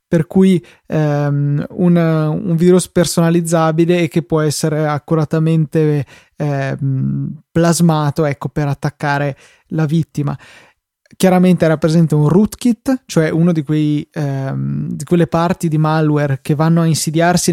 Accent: native